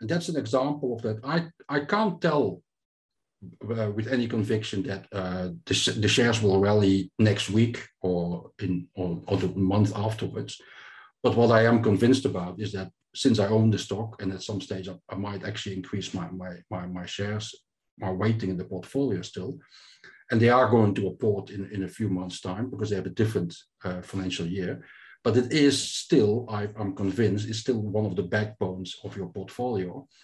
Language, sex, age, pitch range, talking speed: English, male, 50-69, 95-115 Hz, 195 wpm